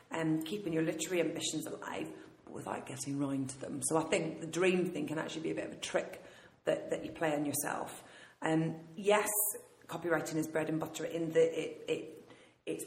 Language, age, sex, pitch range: English, 40-59, female, 160-175 Hz